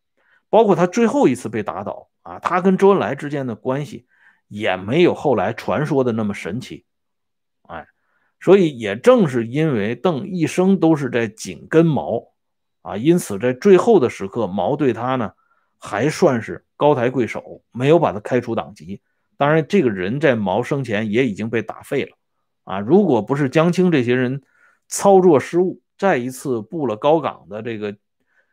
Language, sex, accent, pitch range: Swedish, male, Chinese, 115-180 Hz